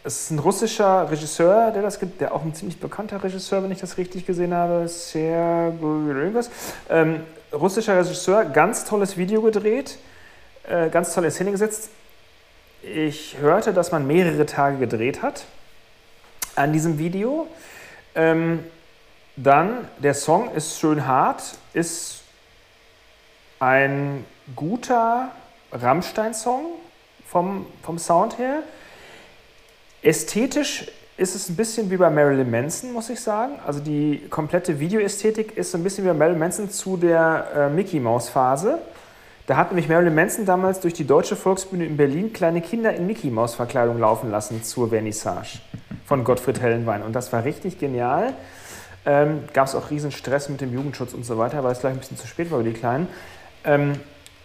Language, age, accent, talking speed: German, 40-59, German, 150 wpm